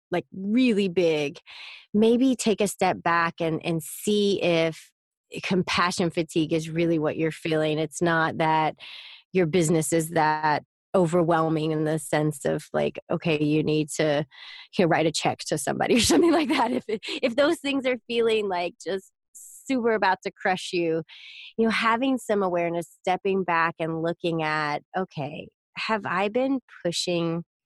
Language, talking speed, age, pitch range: English, 160 wpm, 30-49, 165-200 Hz